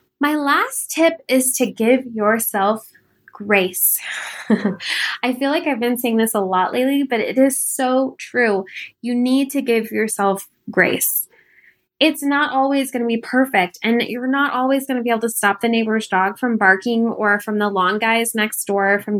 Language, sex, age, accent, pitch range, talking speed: English, female, 10-29, American, 215-270 Hz, 185 wpm